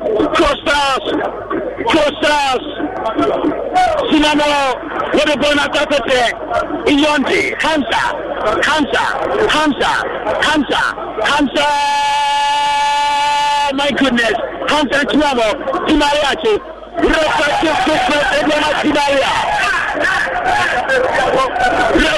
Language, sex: English, male